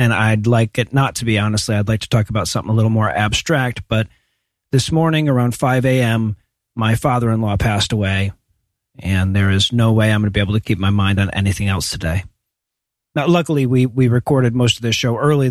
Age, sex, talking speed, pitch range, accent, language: 40-59, male, 215 wpm, 110-135 Hz, American, English